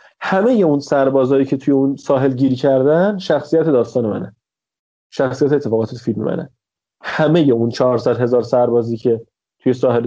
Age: 30-49